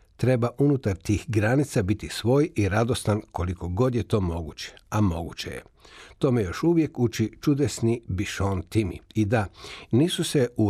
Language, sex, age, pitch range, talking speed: Croatian, male, 60-79, 95-125 Hz, 155 wpm